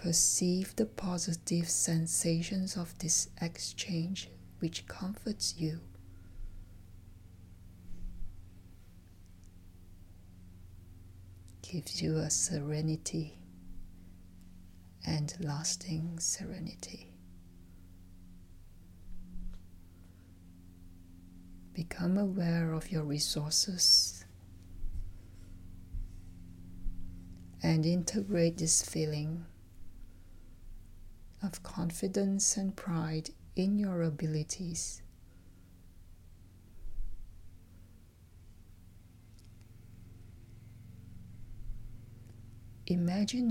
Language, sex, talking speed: English, female, 45 wpm